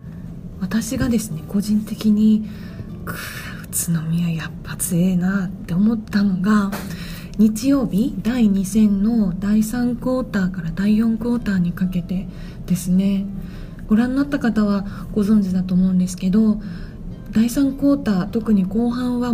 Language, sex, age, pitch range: Japanese, female, 20-39, 180-225 Hz